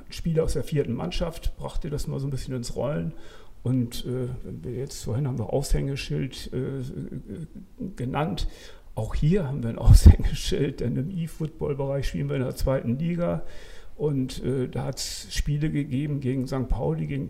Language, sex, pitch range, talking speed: German, male, 125-155 Hz, 170 wpm